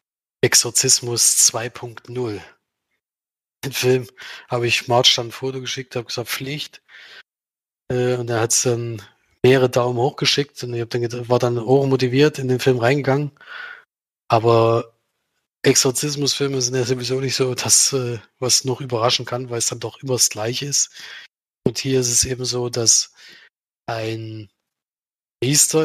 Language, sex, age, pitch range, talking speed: German, male, 20-39, 115-130 Hz, 140 wpm